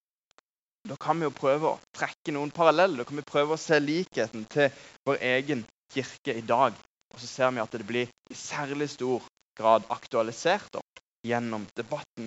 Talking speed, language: 180 wpm, English